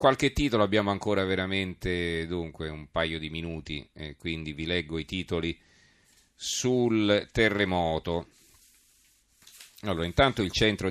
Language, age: Italian, 40-59